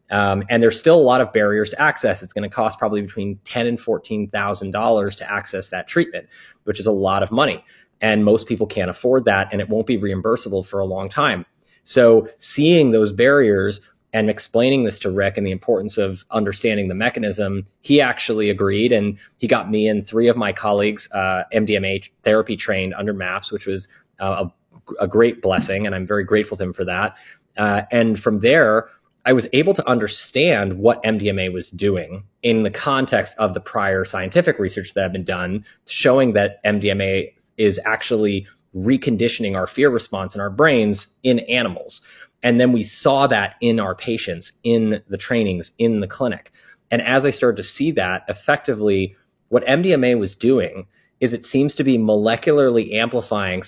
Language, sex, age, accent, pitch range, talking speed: English, male, 30-49, American, 100-120 Hz, 185 wpm